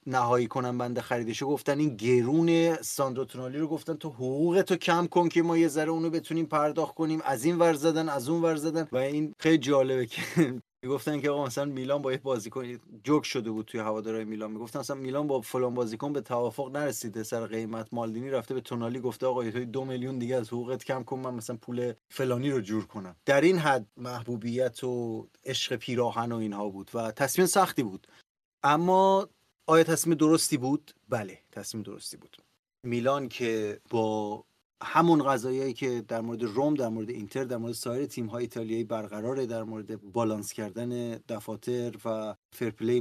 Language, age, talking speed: Persian, 30-49, 180 wpm